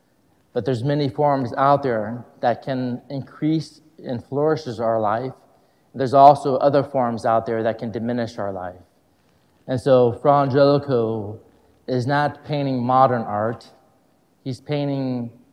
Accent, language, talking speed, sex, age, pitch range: American, English, 130 wpm, male, 30-49, 115-135 Hz